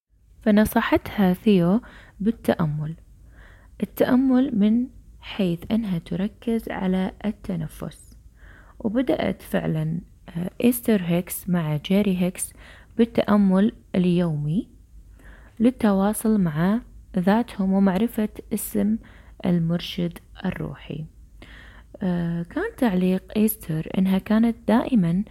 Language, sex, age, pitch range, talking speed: Arabic, female, 20-39, 170-220 Hz, 75 wpm